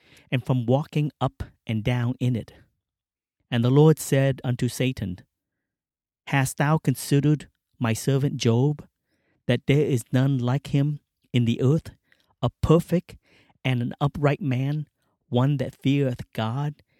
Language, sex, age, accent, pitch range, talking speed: English, male, 40-59, American, 115-140 Hz, 140 wpm